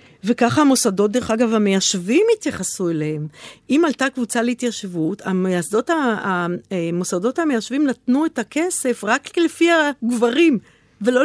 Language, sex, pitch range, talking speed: Hebrew, female, 210-330 Hz, 110 wpm